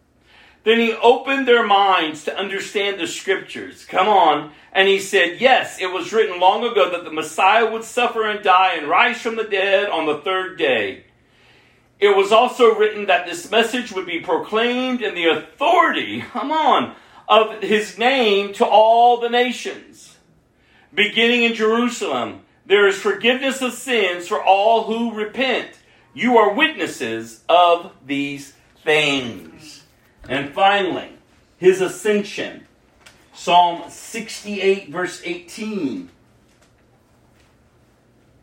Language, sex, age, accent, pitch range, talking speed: English, male, 40-59, American, 140-230 Hz, 130 wpm